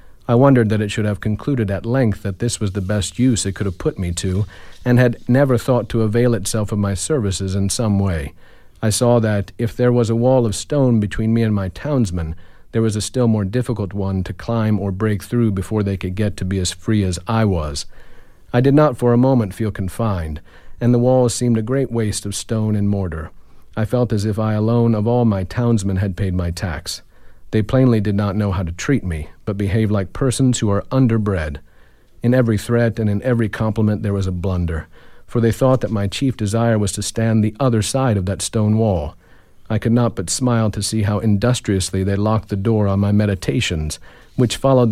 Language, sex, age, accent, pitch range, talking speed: English, male, 50-69, American, 95-120 Hz, 225 wpm